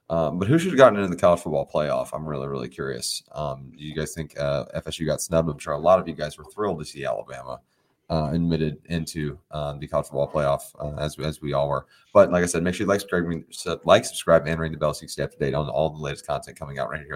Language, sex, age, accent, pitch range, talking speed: English, male, 30-49, American, 75-90 Hz, 275 wpm